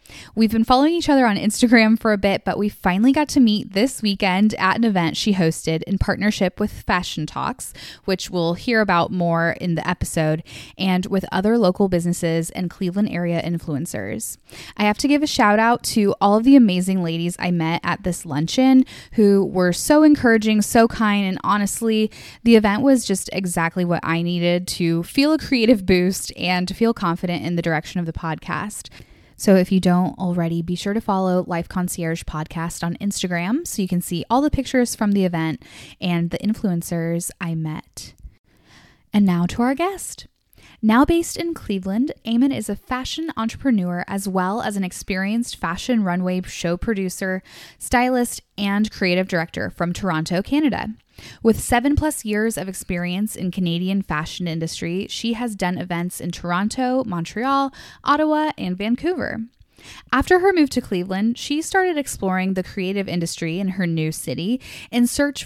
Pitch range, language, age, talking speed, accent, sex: 175-235 Hz, English, 10-29, 175 wpm, American, female